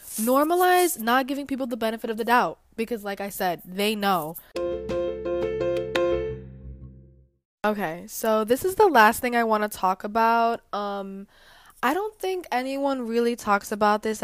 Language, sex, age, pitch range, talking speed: English, female, 10-29, 190-240 Hz, 150 wpm